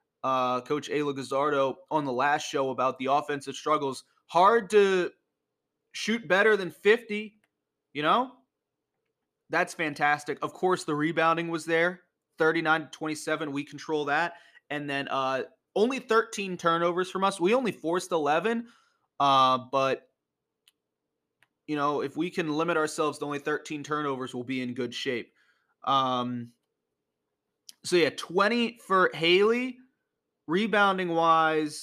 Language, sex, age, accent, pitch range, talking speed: English, male, 20-39, American, 140-185 Hz, 130 wpm